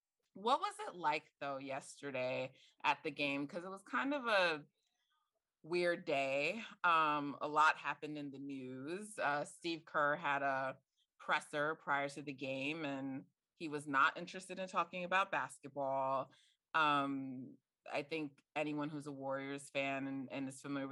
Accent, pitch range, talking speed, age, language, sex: American, 135-165 Hz, 160 wpm, 20-39, English, female